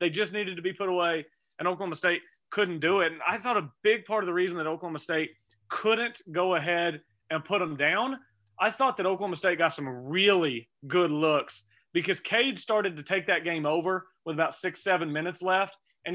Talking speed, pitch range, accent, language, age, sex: 210 wpm, 170-205 Hz, American, English, 30-49, male